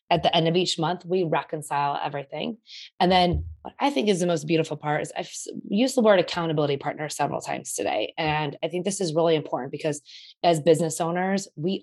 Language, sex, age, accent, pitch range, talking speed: English, female, 20-39, American, 150-180 Hz, 210 wpm